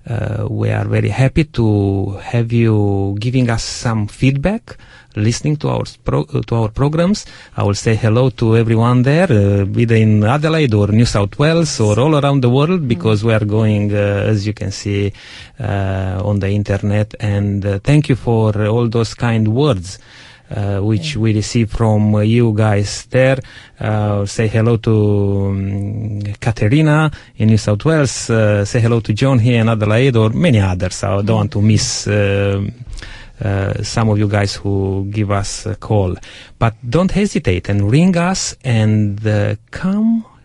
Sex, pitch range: male, 105-125 Hz